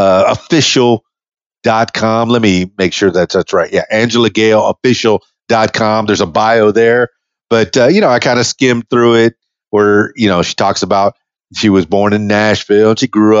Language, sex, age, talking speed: English, male, 50-69, 185 wpm